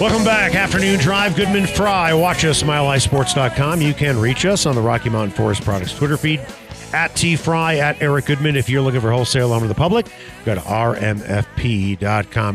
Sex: male